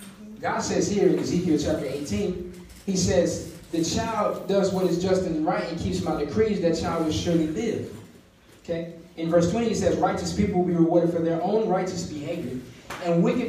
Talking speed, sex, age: 195 wpm, male, 20-39